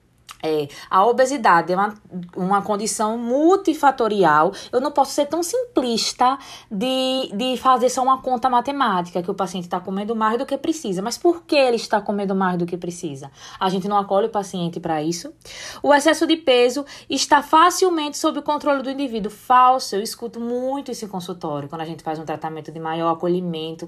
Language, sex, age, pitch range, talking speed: Portuguese, female, 20-39, 185-260 Hz, 185 wpm